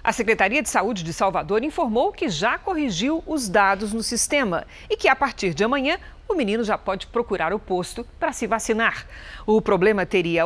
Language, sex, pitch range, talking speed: Portuguese, female, 195-270 Hz, 190 wpm